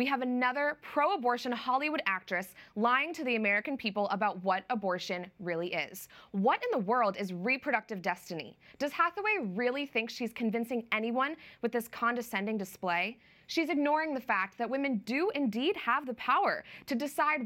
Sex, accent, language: female, American, English